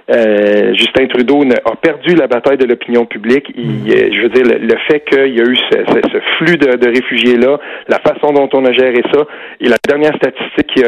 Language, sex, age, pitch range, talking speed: French, male, 40-59, 120-150 Hz, 215 wpm